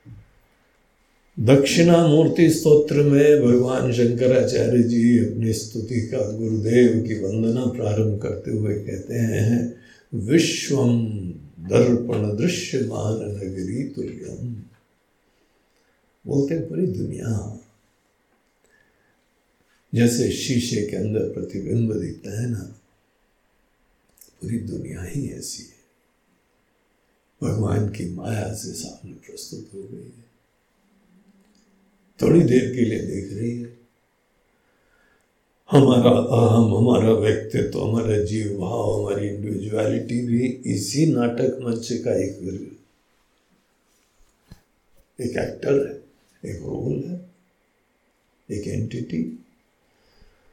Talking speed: 95 wpm